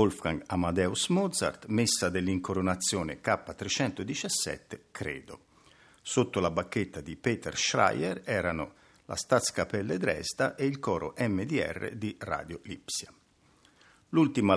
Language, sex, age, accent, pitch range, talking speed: Italian, male, 50-69, native, 95-135 Hz, 105 wpm